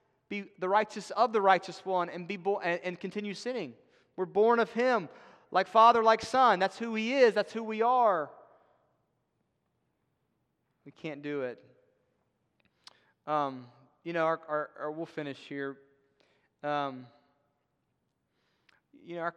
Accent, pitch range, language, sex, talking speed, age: American, 125-170 Hz, English, male, 145 wpm, 30-49